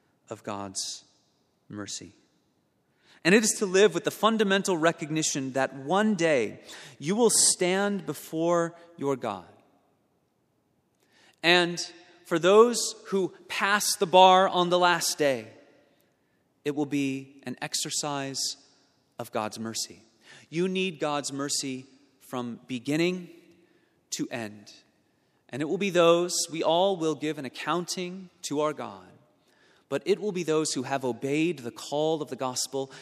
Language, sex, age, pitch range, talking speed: English, male, 30-49, 130-170 Hz, 135 wpm